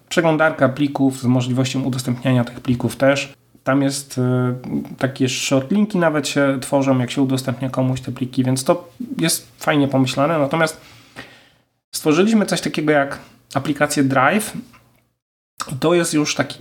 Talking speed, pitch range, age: 135 wpm, 130-145 Hz, 30-49